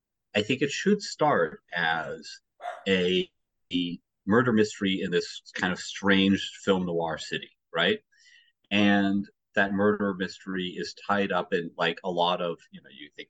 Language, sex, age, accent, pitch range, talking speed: English, male, 30-49, American, 90-110 Hz, 160 wpm